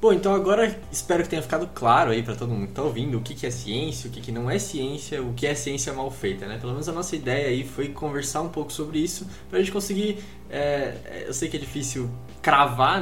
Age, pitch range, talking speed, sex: 20-39, 120-165 Hz, 250 wpm, male